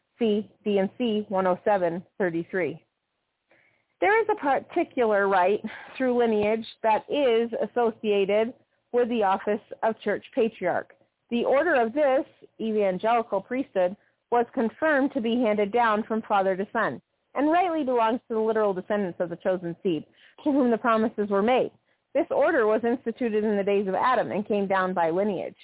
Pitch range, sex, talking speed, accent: 200-250 Hz, female, 150 wpm, American